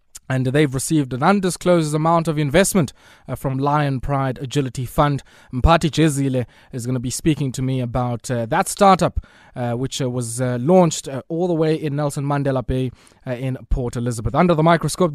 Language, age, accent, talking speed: English, 20-39, South African, 190 wpm